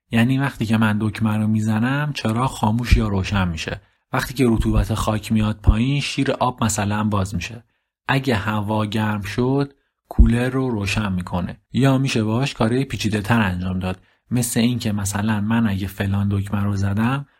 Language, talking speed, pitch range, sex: Persian, 160 wpm, 105-125 Hz, male